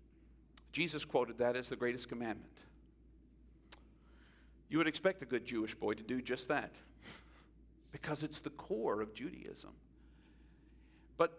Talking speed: 130 wpm